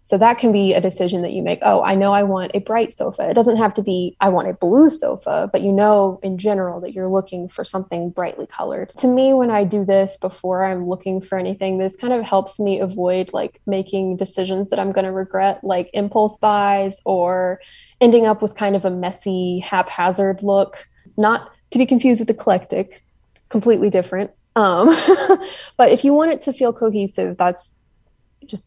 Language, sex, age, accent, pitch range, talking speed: English, female, 20-39, American, 185-215 Hz, 200 wpm